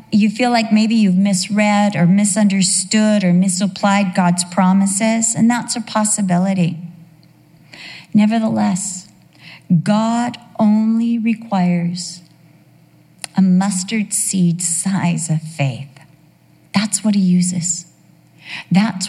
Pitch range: 165-200 Hz